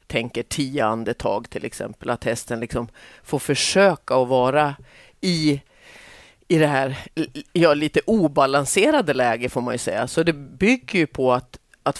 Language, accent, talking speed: Swedish, native, 155 wpm